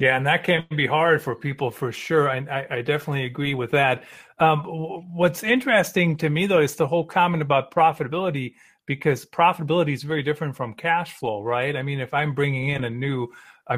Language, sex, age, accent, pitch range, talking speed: English, male, 40-59, American, 125-160 Hz, 200 wpm